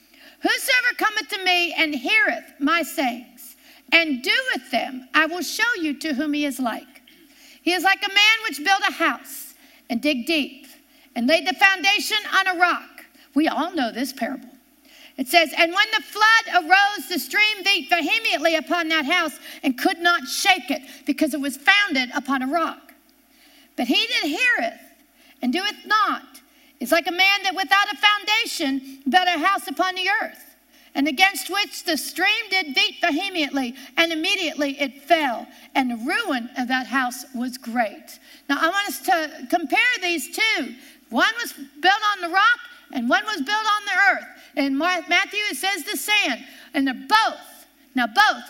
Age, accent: 50-69, American